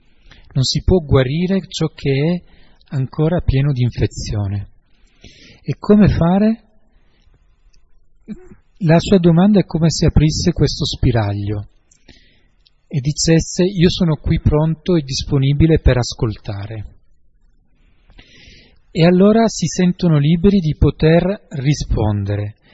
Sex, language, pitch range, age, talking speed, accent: male, Italian, 115-165 Hz, 40-59, 110 wpm, native